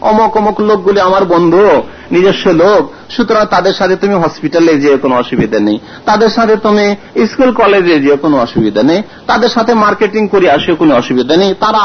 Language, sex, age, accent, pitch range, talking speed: Bengali, male, 50-69, native, 145-215 Hz, 50 wpm